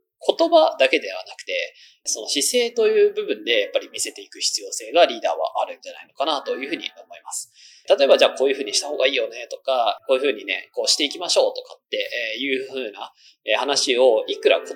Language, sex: Japanese, male